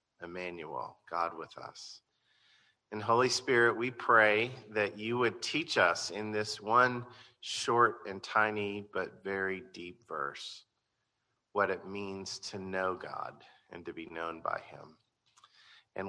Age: 40-59